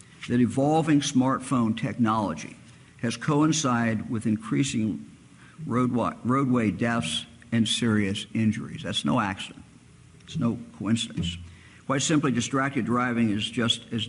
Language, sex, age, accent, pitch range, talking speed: English, male, 50-69, American, 105-135 Hz, 115 wpm